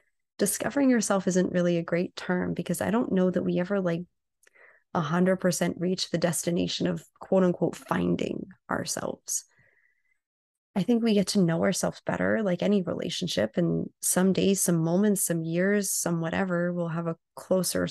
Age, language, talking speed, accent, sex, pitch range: 30-49, English, 160 wpm, American, female, 170-185 Hz